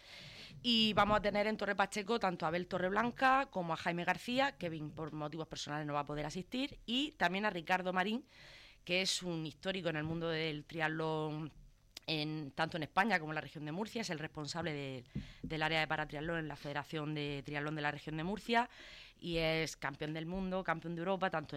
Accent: Spanish